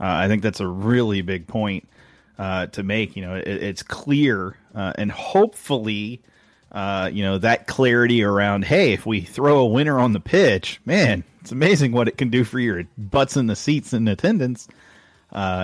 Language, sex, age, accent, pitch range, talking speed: English, male, 30-49, American, 105-130 Hz, 190 wpm